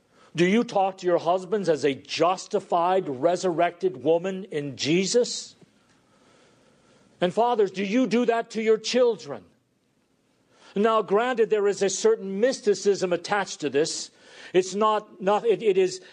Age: 50-69